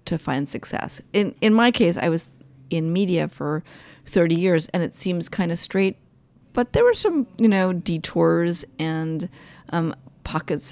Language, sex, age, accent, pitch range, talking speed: English, female, 30-49, American, 155-200 Hz, 170 wpm